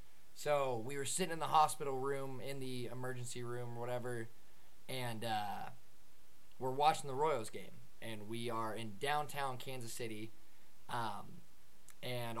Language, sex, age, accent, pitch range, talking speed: English, male, 20-39, American, 110-130 Hz, 145 wpm